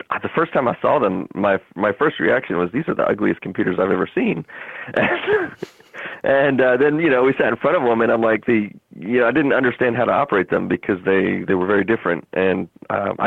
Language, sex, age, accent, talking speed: English, male, 40-59, American, 230 wpm